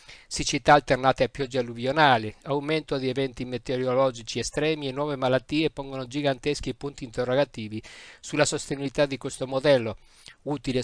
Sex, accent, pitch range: male, native, 125-145 Hz